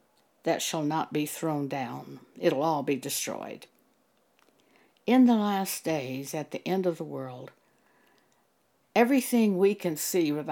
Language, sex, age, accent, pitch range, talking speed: English, female, 60-79, American, 155-215 Hz, 150 wpm